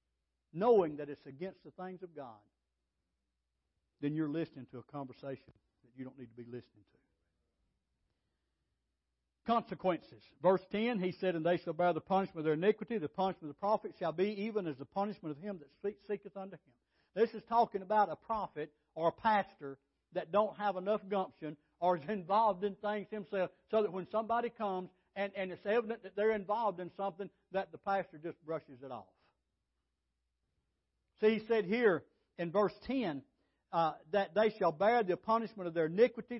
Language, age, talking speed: English, 60-79, 185 wpm